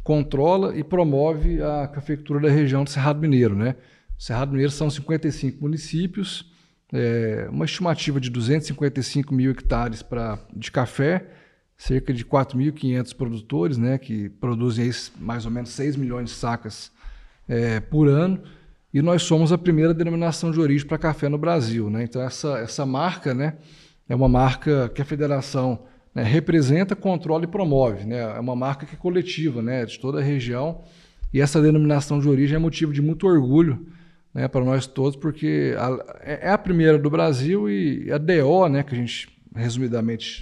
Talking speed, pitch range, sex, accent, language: 170 wpm, 125-160 Hz, male, Brazilian, Portuguese